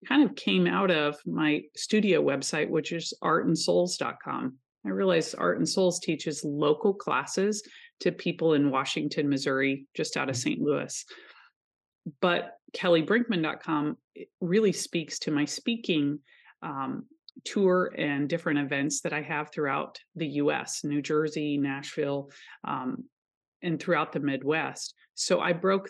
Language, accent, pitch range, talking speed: English, American, 145-180 Hz, 135 wpm